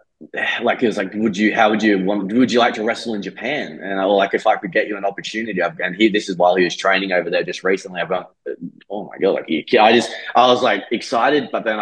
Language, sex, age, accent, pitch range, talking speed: English, male, 20-39, Australian, 90-110 Hz, 270 wpm